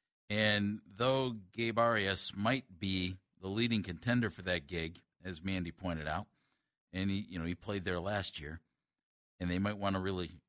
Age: 50-69